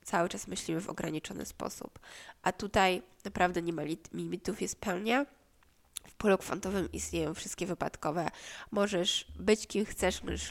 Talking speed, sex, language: 135 wpm, female, Polish